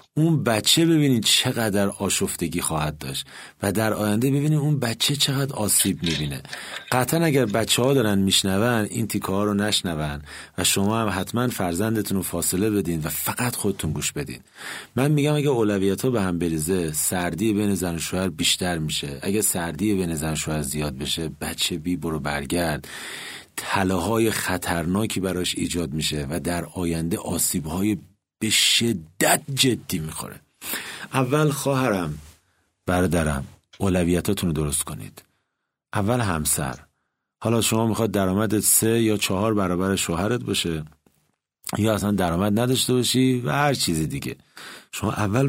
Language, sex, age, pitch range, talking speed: Persian, male, 40-59, 85-125 Hz, 135 wpm